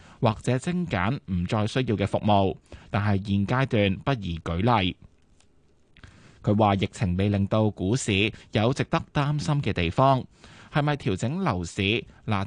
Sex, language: male, Chinese